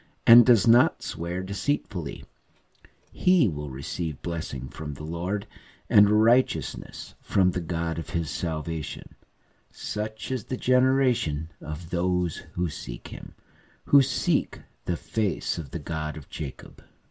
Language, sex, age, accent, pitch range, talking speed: English, male, 50-69, American, 80-110 Hz, 135 wpm